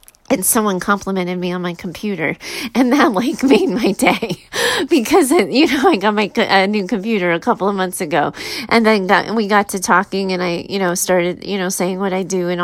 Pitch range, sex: 195-235 Hz, female